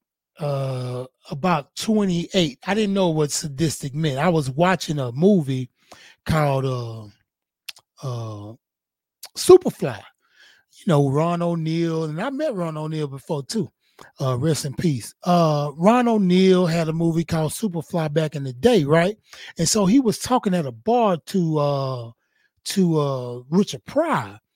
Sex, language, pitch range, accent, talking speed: male, English, 145-215 Hz, American, 145 wpm